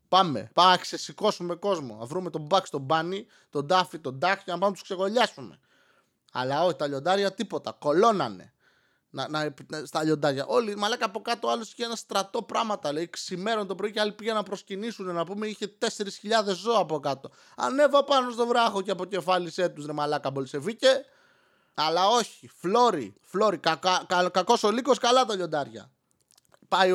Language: Greek